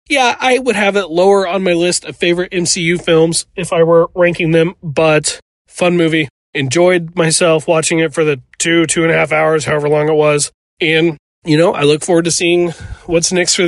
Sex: male